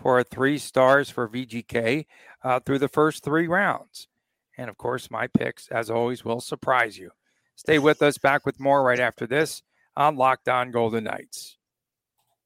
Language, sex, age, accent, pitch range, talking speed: English, male, 50-69, American, 125-145 Hz, 170 wpm